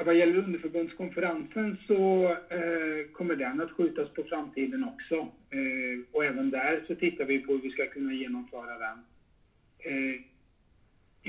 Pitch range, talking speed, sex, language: 125-155 Hz, 145 wpm, male, Swedish